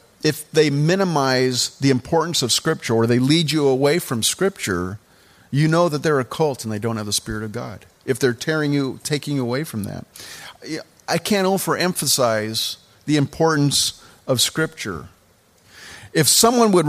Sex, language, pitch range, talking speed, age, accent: male, English, 120-165 Hz, 165 wpm, 50-69, American